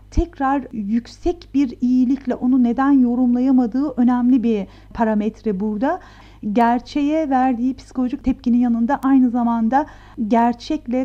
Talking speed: 105 wpm